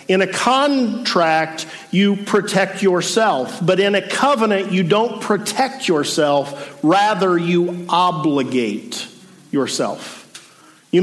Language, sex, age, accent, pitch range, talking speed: English, male, 50-69, American, 165-225 Hz, 105 wpm